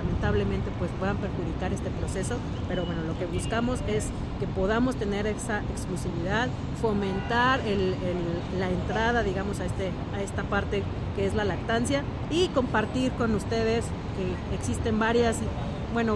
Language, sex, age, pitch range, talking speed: Spanish, female, 40-59, 95-120 Hz, 145 wpm